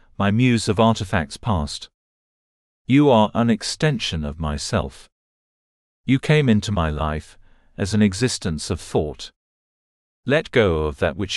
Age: 40-59